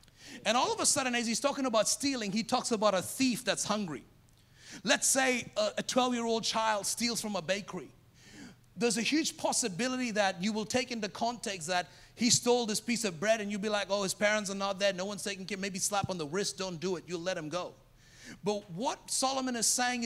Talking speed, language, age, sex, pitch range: 225 wpm, English, 30-49, male, 145-230 Hz